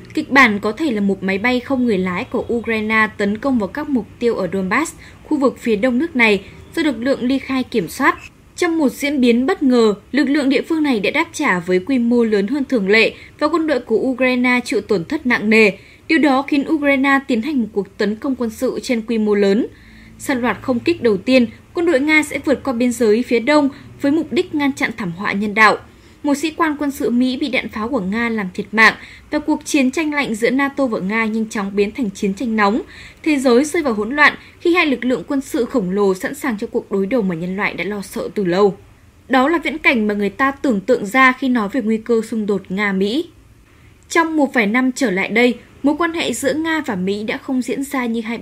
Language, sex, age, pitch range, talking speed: Vietnamese, female, 10-29, 215-275 Hz, 250 wpm